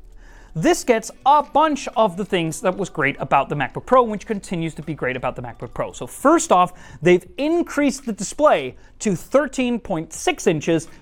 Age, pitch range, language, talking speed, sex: 30-49, 160-235 Hz, English, 180 wpm, male